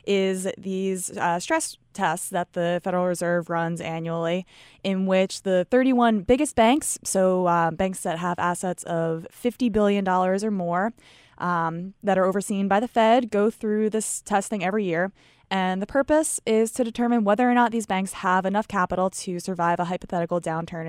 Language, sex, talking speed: English, female, 170 wpm